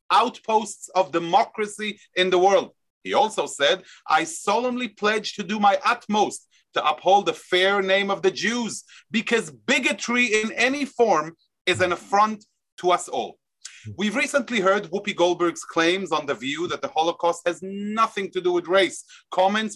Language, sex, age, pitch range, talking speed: English, male, 30-49, 175-230 Hz, 165 wpm